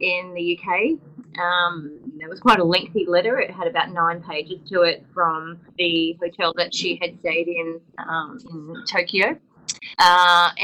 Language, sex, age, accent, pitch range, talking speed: English, female, 20-39, Australian, 170-210 Hz, 165 wpm